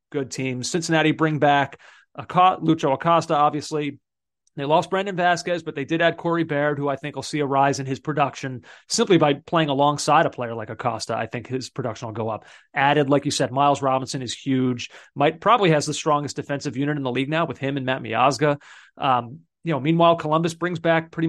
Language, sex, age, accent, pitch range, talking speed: English, male, 30-49, American, 135-165 Hz, 210 wpm